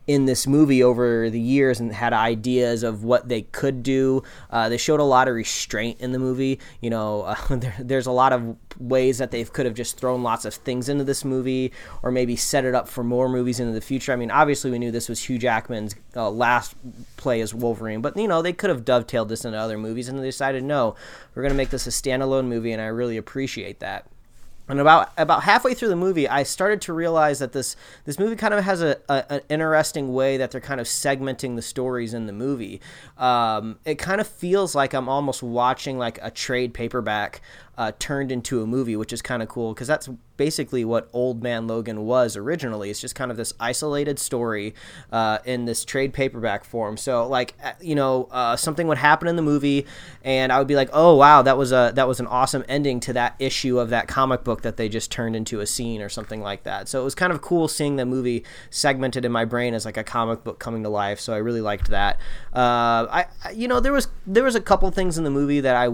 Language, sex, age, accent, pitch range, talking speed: English, male, 20-39, American, 115-140 Hz, 240 wpm